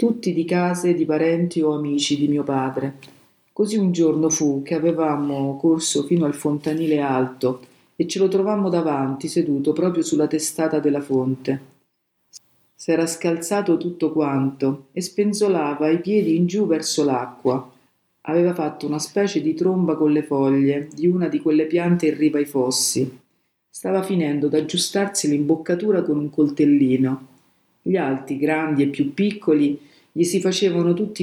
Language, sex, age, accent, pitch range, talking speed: Italian, female, 50-69, native, 140-175 Hz, 150 wpm